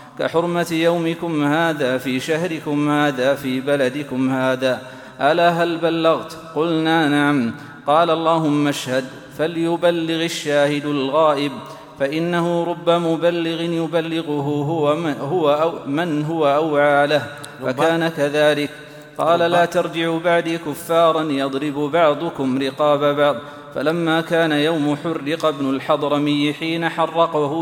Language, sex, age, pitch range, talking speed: Arabic, male, 40-59, 145-165 Hz, 110 wpm